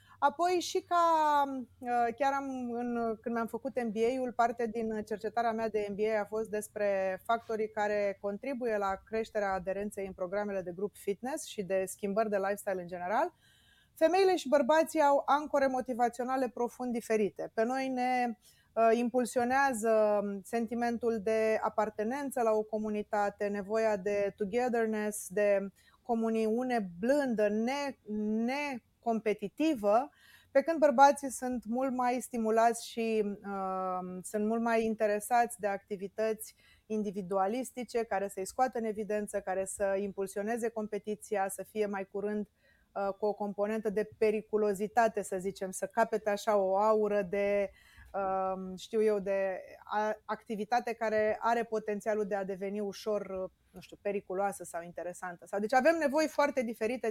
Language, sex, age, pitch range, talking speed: Romanian, female, 20-39, 205-250 Hz, 135 wpm